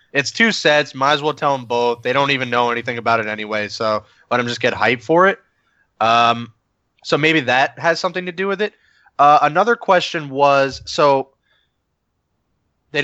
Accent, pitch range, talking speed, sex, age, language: American, 115-150 Hz, 190 wpm, male, 20-39, English